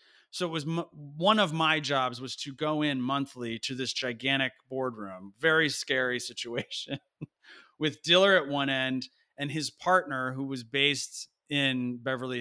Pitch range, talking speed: 130-180 Hz, 160 wpm